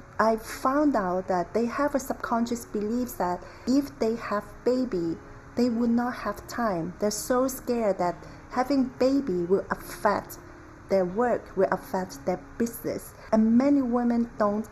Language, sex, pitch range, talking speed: English, female, 185-235 Hz, 150 wpm